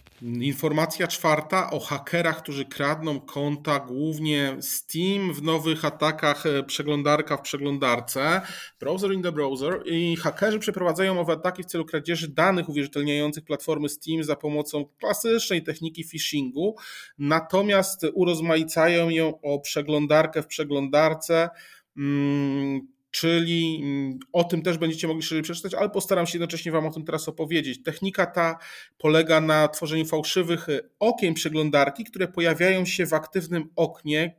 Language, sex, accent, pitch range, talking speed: Polish, male, native, 150-175 Hz, 130 wpm